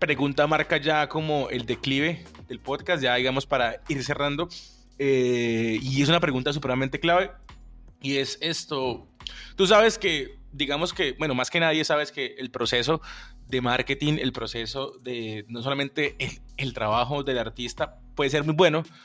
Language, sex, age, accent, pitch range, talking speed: Spanish, male, 20-39, Colombian, 125-150 Hz, 165 wpm